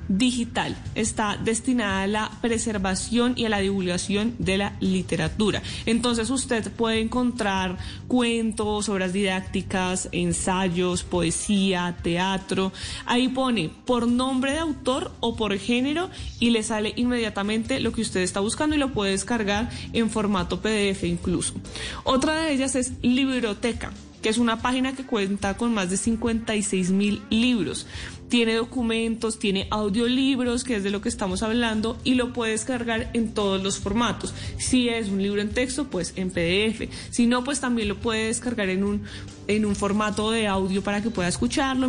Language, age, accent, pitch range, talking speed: Spanish, 20-39, Colombian, 195-245 Hz, 160 wpm